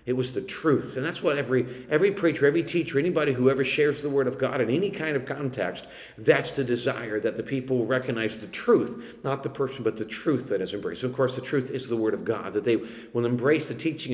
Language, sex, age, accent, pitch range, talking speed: English, male, 50-69, American, 120-150 Hz, 250 wpm